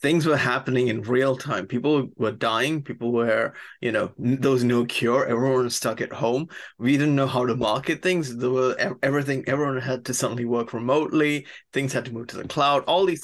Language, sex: English, male